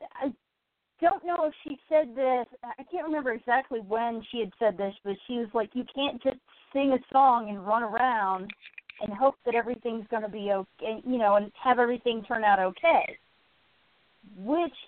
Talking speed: 185 wpm